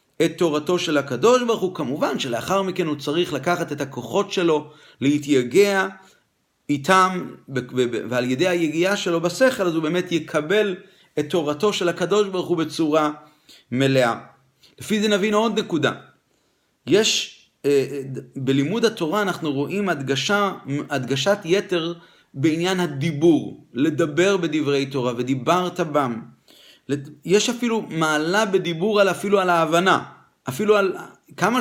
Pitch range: 150-190 Hz